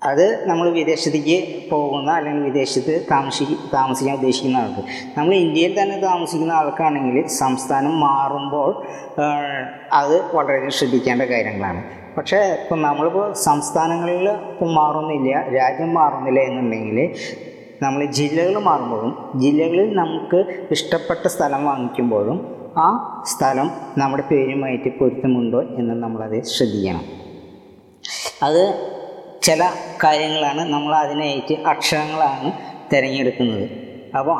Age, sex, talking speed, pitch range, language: 20-39, female, 90 wpm, 130-165 Hz, Malayalam